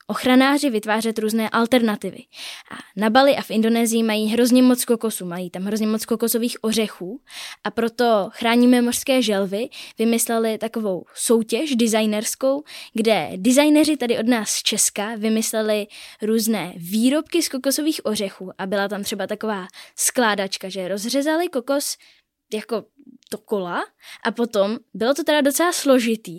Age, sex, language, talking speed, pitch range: 10-29, female, Czech, 140 wpm, 215-255 Hz